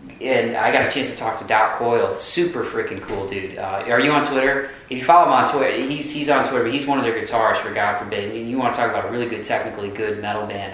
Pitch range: 100-120 Hz